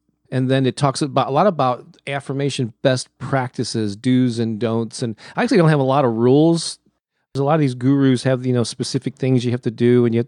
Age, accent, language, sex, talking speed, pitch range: 40-59, American, English, male, 240 wpm, 115-140 Hz